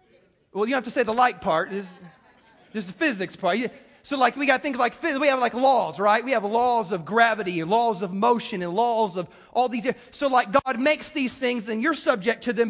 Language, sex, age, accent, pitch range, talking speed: English, male, 30-49, American, 210-275 Hz, 240 wpm